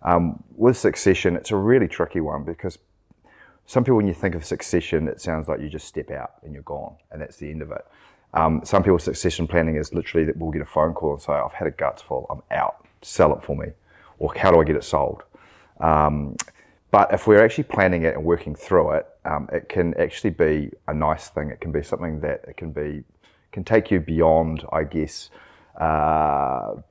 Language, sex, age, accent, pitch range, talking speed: English, male, 30-49, Australian, 75-85 Hz, 220 wpm